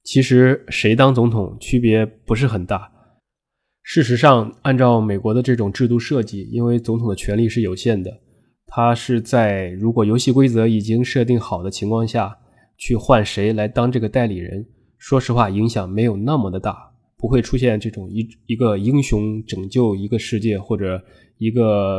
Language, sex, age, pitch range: Chinese, male, 20-39, 105-125 Hz